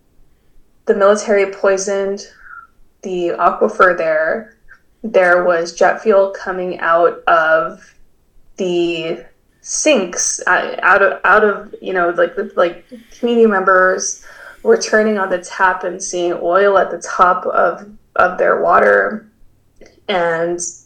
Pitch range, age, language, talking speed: 170-205 Hz, 20-39, English, 120 wpm